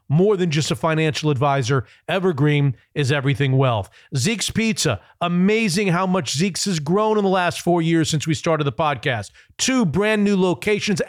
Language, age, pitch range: English, 40-59, 150-210 Hz